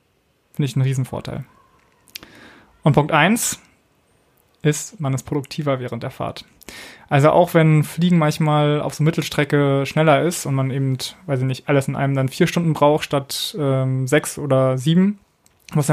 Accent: German